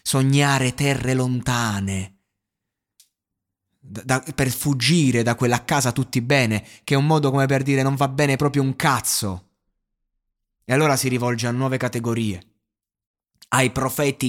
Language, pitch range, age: Italian, 110-140 Hz, 20-39